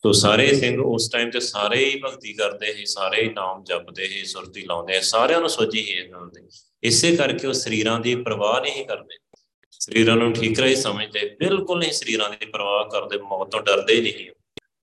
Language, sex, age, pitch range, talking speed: Punjabi, male, 30-49, 95-130 Hz, 180 wpm